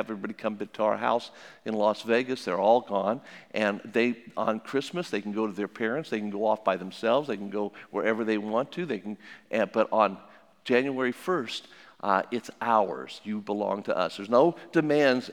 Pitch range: 110-135 Hz